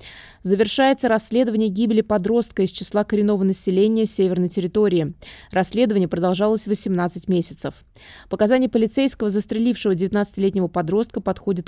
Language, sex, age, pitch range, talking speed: Russian, female, 20-39, 180-220 Hz, 105 wpm